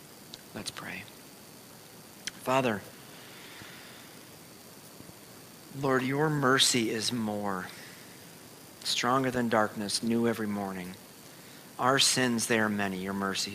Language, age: English, 40-59